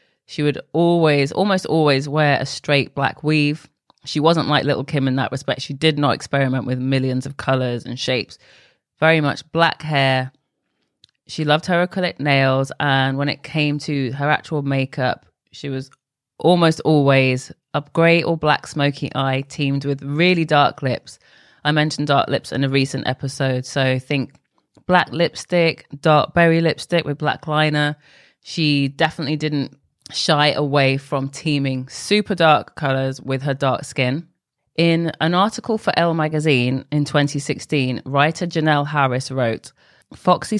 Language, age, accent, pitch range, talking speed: English, 20-39, British, 135-160 Hz, 155 wpm